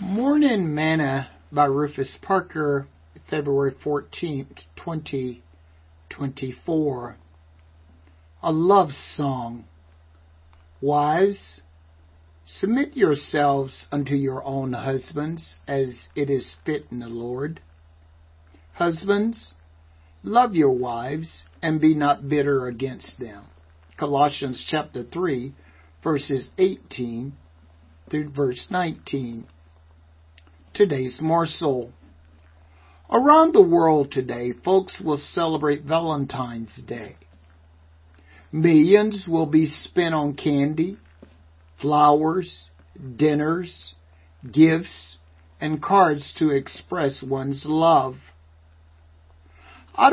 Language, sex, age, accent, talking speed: English, male, 60-79, American, 85 wpm